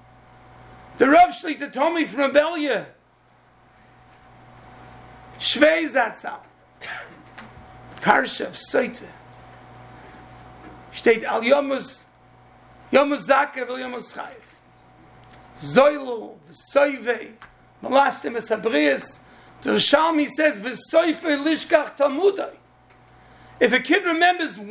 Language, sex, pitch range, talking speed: English, male, 240-295 Hz, 80 wpm